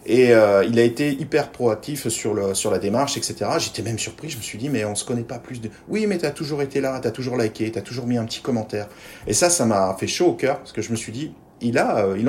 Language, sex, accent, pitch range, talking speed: French, male, French, 105-130 Hz, 310 wpm